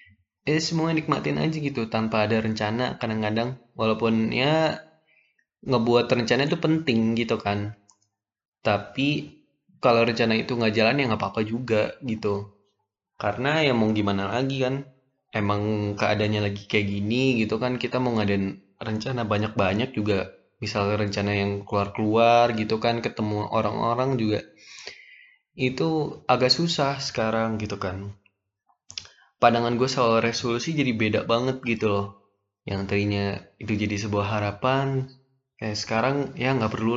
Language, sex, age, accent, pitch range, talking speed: Indonesian, male, 10-29, native, 105-130 Hz, 135 wpm